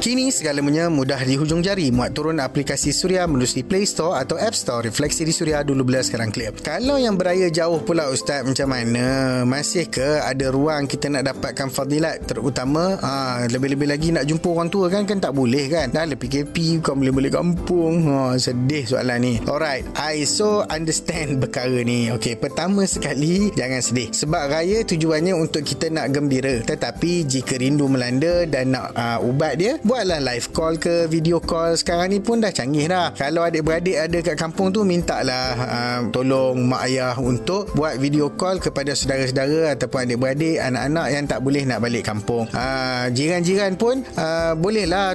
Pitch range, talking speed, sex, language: 130-170 Hz, 175 wpm, male, Malay